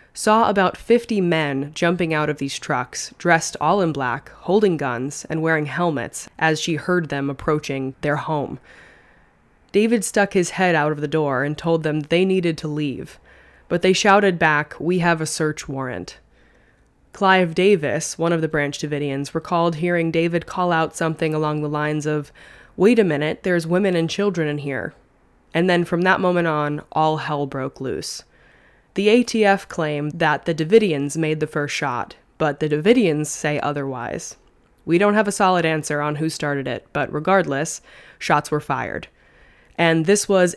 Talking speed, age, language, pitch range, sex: 175 wpm, 20-39, English, 150-180 Hz, female